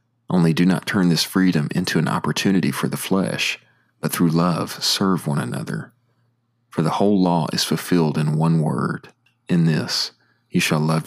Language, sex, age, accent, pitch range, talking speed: English, male, 40-59, American, 80-120 Hz, 175 wpm